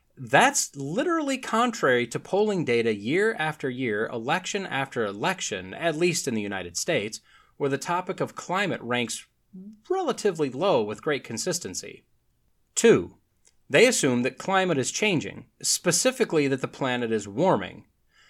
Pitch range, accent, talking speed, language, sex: 135-210 Hz, American, 140 wpm, English, male